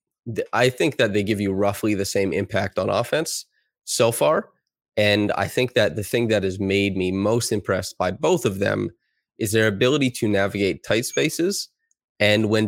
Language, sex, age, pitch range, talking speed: English, male, 20-39, 100-110 Hz, 185 wpm